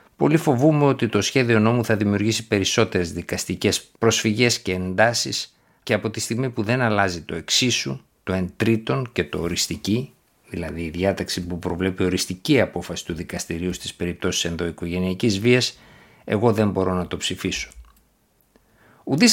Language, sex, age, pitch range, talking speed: Greek, male, 60-79, 95-115 Hz, 150 wpm